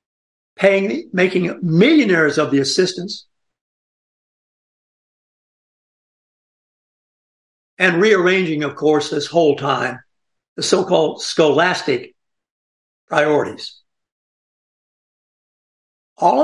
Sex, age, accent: male, 60-79, American